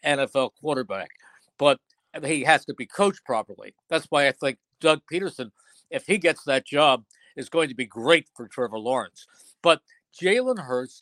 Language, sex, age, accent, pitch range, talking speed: English, male, 50-69, American, 140-185 Hz, 170 wpm